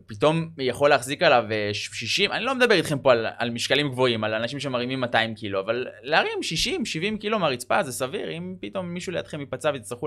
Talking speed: 190 wpm